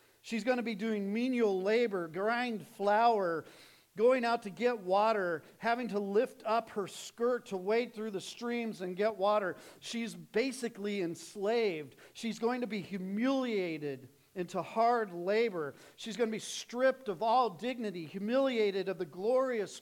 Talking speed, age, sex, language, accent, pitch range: 155 wpm, 50-69, male, English, American, 150-230 Hz